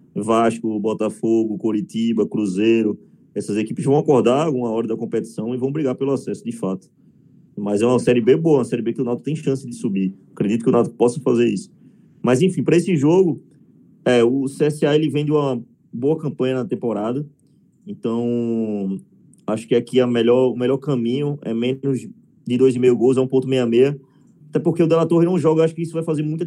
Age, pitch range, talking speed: 20-39, 120-150 Hz, 200 wpm